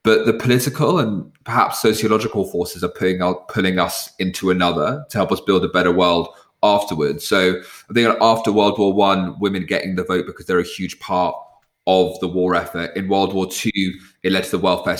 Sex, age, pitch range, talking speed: male, 20-39, 90-100 Hz, 200 wpm